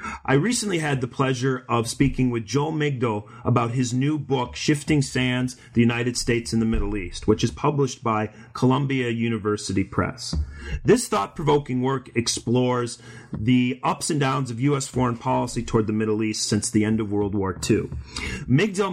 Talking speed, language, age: 175 wpm, English, 30-49